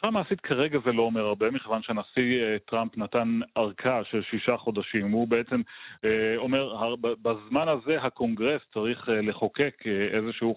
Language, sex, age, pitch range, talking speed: Hebrew, male, 30-49, 105-125 Hz, 130 wpm